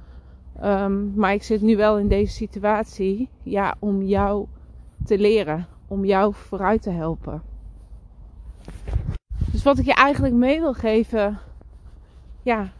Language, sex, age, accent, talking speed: Dutch, female, 30-49, Dutch, 130 wpm